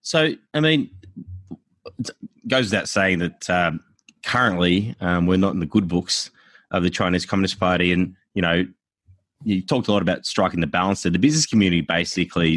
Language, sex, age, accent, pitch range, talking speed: English, male, 20-39, Australian, 80-95 Hz, 180 wpm